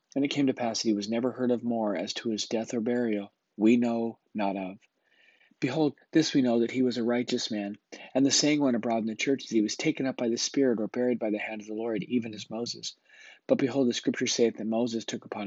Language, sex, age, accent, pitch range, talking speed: English, male, 40-59, American, 105-120 Hz, 265 wpm